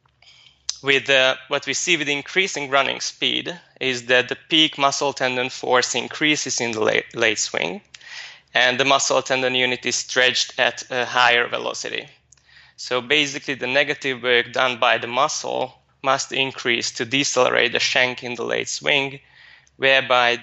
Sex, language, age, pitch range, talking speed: male, English, 20-39, 125-140 Hz, 155 wpm